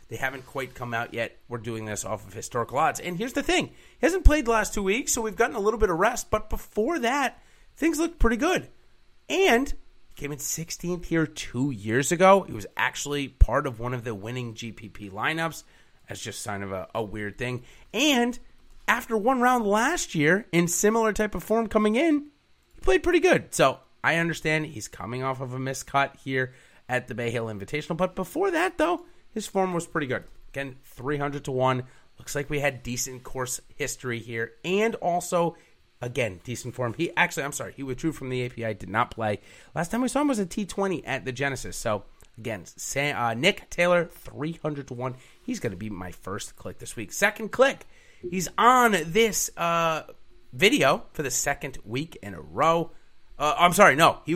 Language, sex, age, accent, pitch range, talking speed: English, male, 30-49, American, 120-200 Hz, 205 wpm